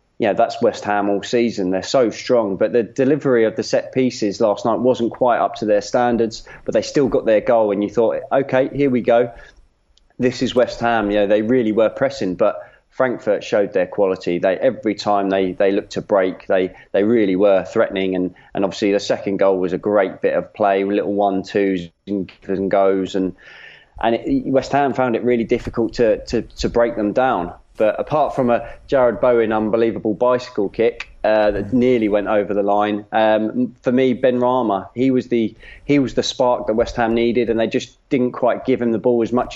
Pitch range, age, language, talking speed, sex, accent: 100-125 Hz, 20-39, English, 210 wpm, male, British